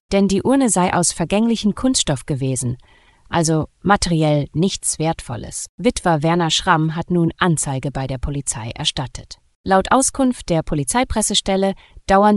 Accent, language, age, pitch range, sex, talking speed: German, German, 30-49, 145-190 Hz, female, 130 wpm